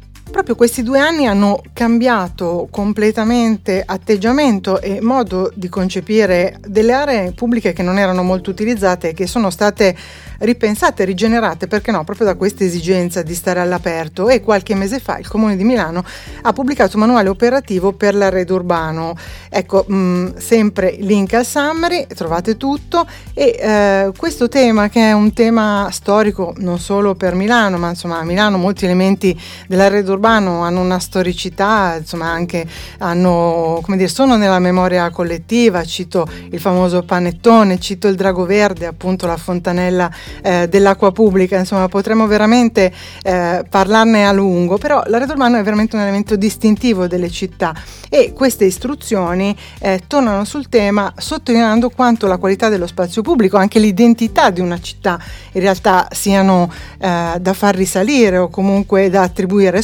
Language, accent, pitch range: Italian, native, 185-225 Hz